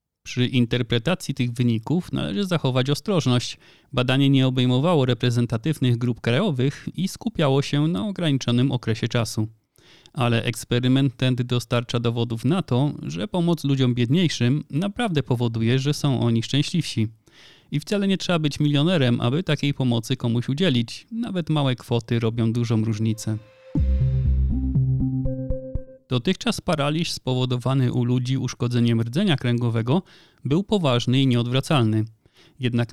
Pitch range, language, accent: 120-150 Hz, Polish, native